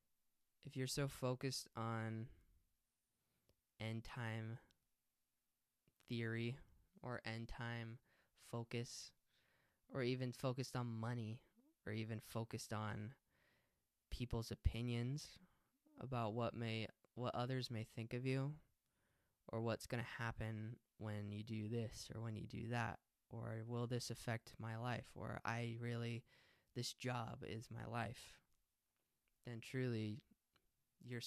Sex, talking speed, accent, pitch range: male, 115 wpm, American, 110-130 Hz